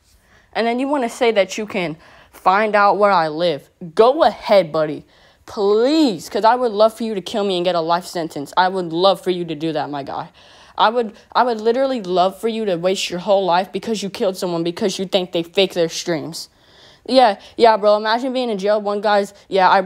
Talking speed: 235 wpm